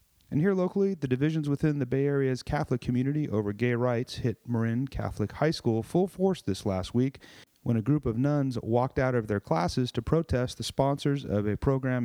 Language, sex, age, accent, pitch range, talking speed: English, male, 40-59, American, 115-140 Hz, 205 wpm